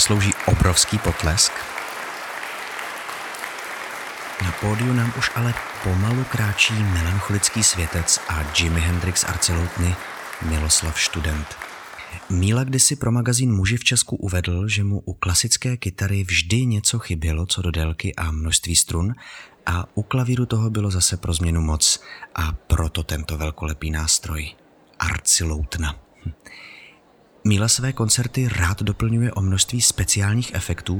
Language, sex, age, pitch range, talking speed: Czech, male, 30-49, 85-110 Hz, 125 wpm